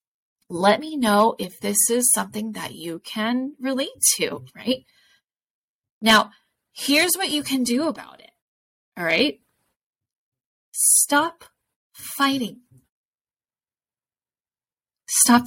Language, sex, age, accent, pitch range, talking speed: English, female, 20-39, American, 205-275 Hz, 100 wpm